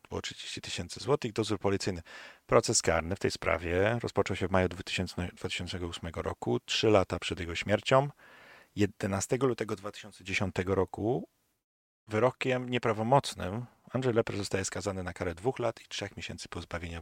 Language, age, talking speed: Polish, 40-59, 140 wpm